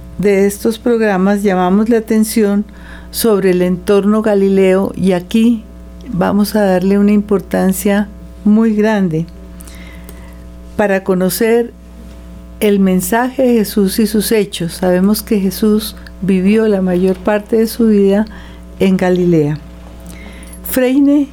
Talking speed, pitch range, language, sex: 115 wpm, 180-215 Hz, Spanish, female